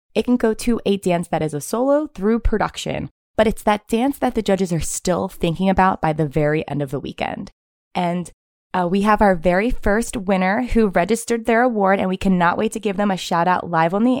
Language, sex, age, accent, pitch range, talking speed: English, female, 20-39, American, 170-225 Hz, 230 wpm